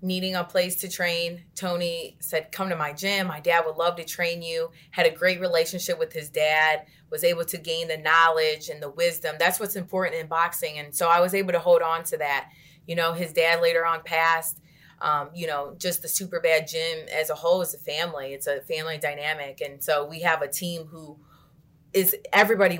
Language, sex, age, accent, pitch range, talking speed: English, female, 20-39, American, 155-190 Hz, 220 wpm